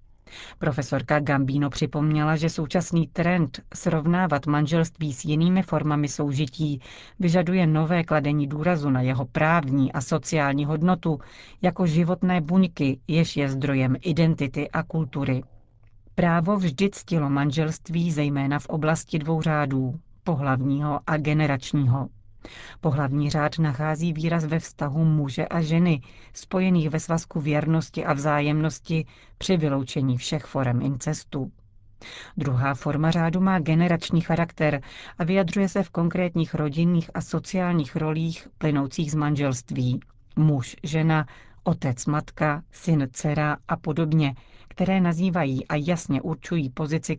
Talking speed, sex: 120 wpm, female